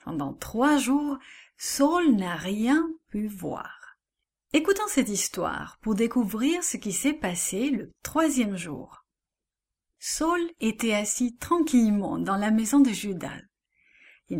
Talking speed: 125 wpm